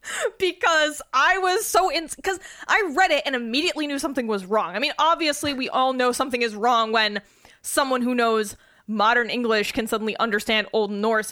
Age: 10-29